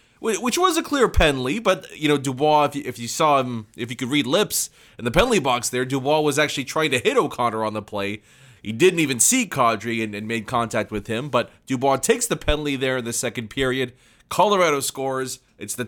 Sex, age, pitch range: male, 20-39, 115-150 Hz